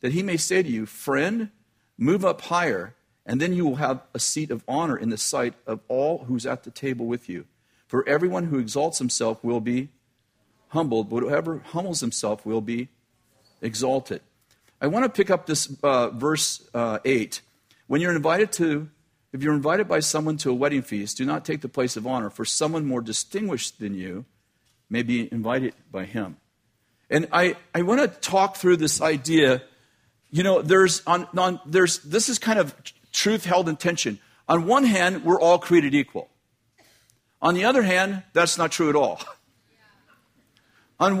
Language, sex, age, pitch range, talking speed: English, male, 50-69, 125-185 Hz, 185 wpm